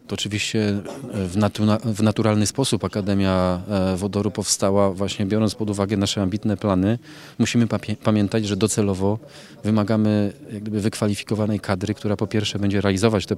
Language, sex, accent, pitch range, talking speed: Polish, male, native, 95-105 Hz, 125 wpm